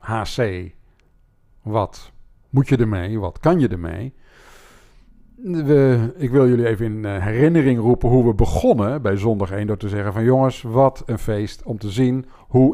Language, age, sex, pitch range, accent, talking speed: Dutch, 50-69, male, 105-150 Hz, Dutch, 165 wpm